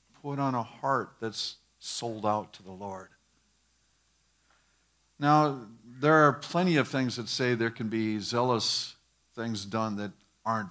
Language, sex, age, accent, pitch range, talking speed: English, male, 50-69, American, 115-145 Hz, 145 wpm